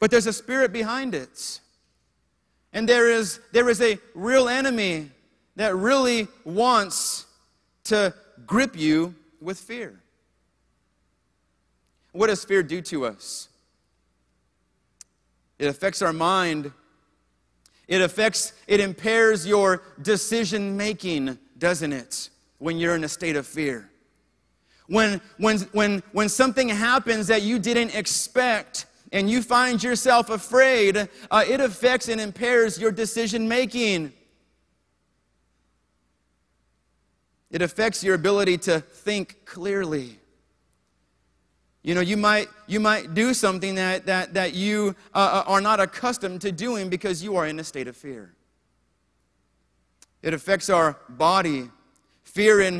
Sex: male